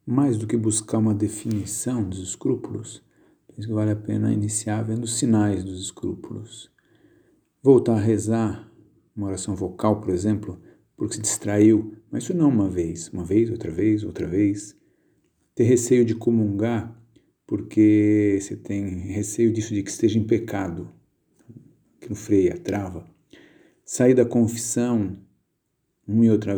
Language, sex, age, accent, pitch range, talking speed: Portuguese, male, 50-69, Brazilian, 105-120 Hz, 140 wpm